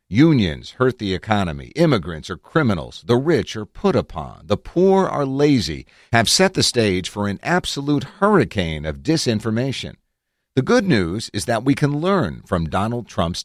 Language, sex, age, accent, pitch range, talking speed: English, male, 50-69, American, 90-140 Hz, 165 wpm